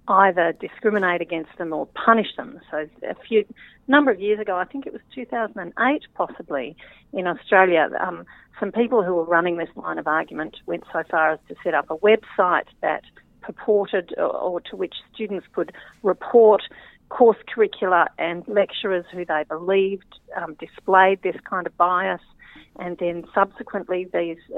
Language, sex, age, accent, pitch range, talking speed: English, female, 40-59, Australian, 170-205 Hz, 165 wpm